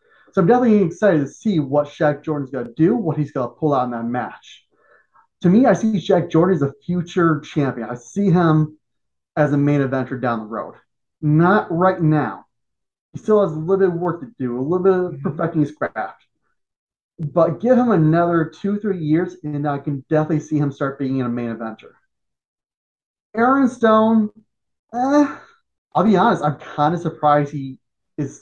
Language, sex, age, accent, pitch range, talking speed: English, male, 30-49, American, 140-180 Hz, 195 wpm